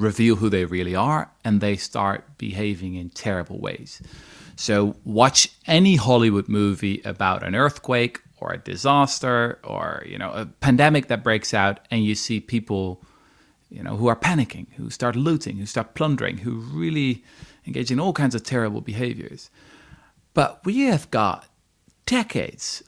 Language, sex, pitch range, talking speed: English, male, 110-145 Hz, 155 wpm